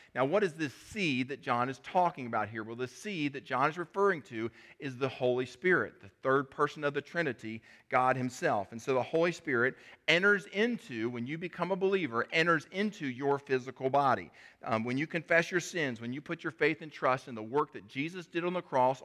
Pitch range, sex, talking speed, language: 125-160 Hz, male, 220 wpm, English